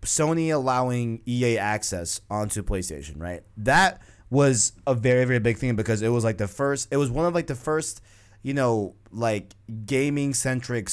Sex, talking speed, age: male, 170 wpm, 20-39